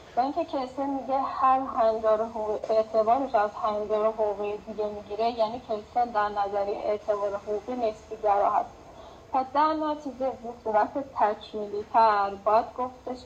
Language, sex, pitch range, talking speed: Persian, female, 210-240 Hz, 140 wpm